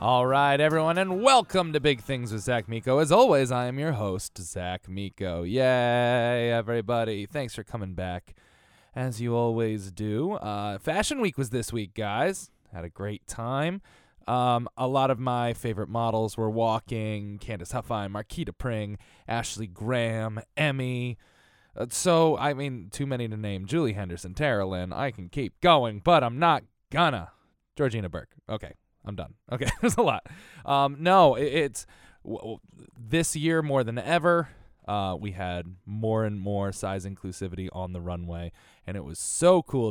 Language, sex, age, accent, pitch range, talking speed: English, male, 20-39, American, 100-130 Hz, 160 wpm